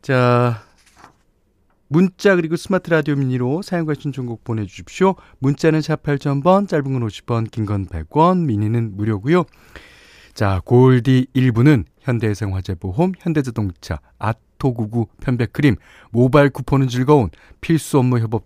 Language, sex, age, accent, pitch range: Korean, male, 40-59, native, 100-145 Hz